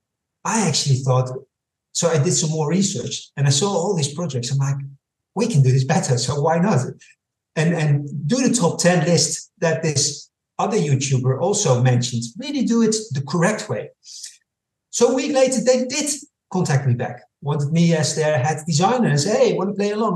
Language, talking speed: English, 195 wpm